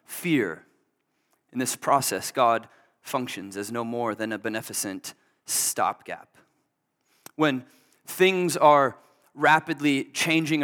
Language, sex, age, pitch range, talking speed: English, male, 20-39, 135-165 Hz, 100 wpm